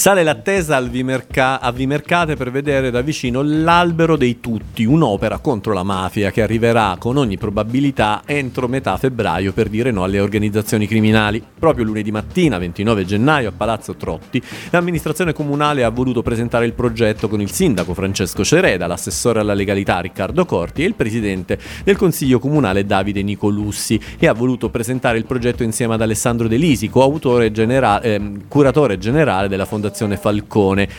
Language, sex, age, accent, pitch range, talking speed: Italian, male, 40-59, native, 110-130 Hz, 155 wpm